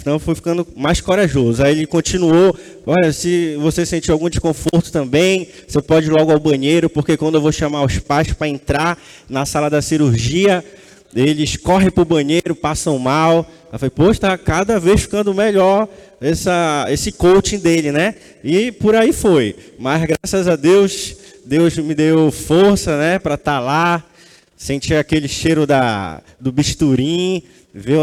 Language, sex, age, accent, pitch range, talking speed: Portuguese, male, 20-39, Brazilian, 145-190 Hz, 165 wpm